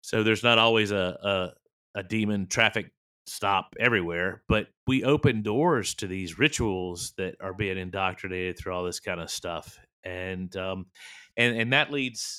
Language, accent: English, American